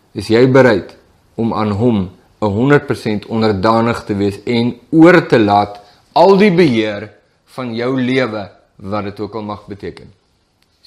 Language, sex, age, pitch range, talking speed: English, male, 50-69, 110-155 Hz, 150 wpm